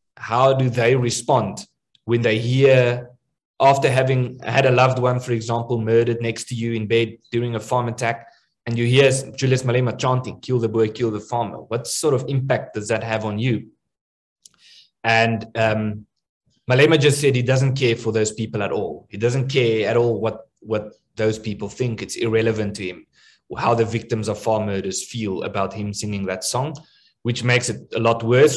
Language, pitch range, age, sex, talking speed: English, 110-130 Hz, 20-39, male, 190 wpm